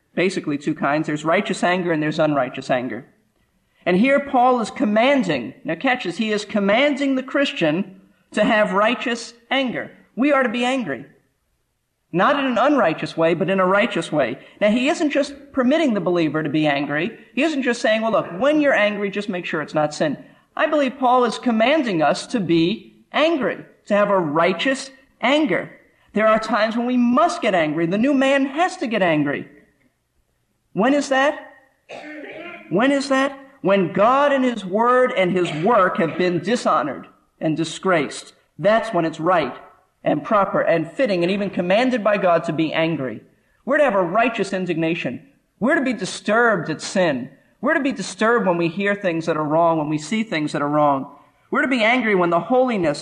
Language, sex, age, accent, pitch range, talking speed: English, male, 50-69, American, 165-255 Hz, 190 wpm